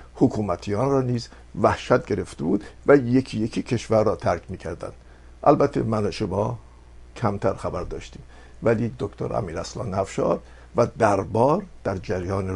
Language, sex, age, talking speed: Persian, male, 50-69, 130 wpm